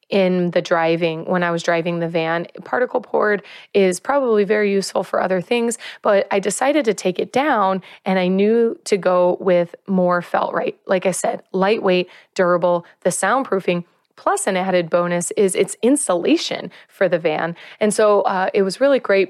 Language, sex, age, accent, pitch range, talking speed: English, female, 30-49, American, 180-205 Hz, 180 wpm